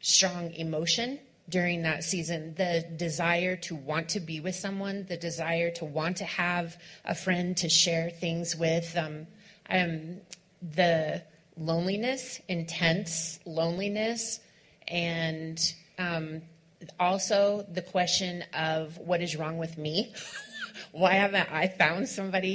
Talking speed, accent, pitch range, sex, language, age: 125 wpm, American, 165-190 Hz, female, English, 30-49